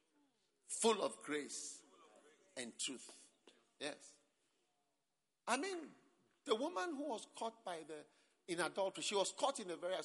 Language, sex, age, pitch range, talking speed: English, male, 50-69, 225-335 Hz, 145 wpm